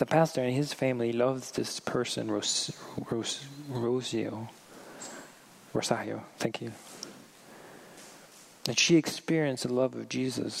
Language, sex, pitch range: English, male, 115-145 Hz